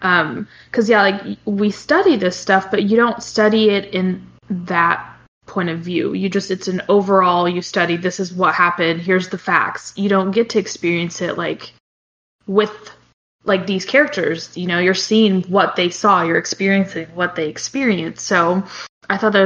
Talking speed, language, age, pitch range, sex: 180 wpm, English, 20-39, 185-210 Hz, female